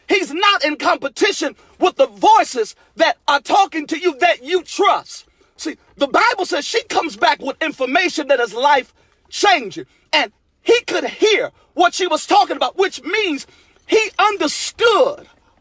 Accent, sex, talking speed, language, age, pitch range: American, male, 160 wpm, English, 40-59, 295-390 Hz